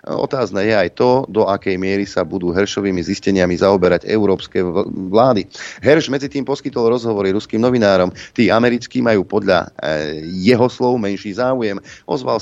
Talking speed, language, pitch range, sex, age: 145 wpm, Slovak, 100-120 Hz, male, 30-49